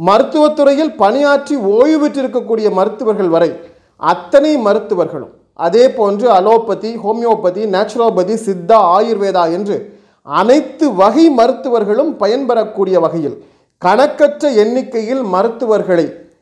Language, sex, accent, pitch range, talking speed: Tamil, male, native, 185-260 Hz, 90 wpm